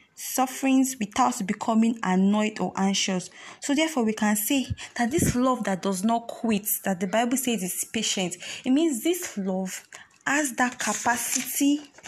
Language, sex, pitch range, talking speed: English, female, 190-255 Hz, 155 wpm